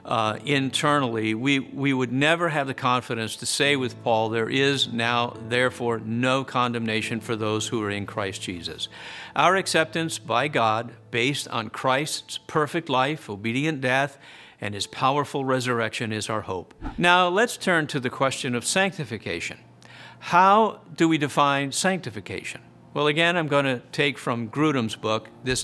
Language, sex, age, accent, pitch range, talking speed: English, male, 50-69, American, 115-155 Hz, 155 wpm